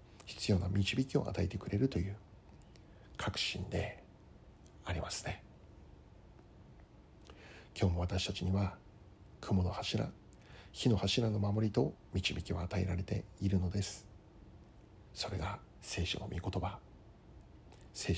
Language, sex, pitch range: Japanese, male, 90-105 Hz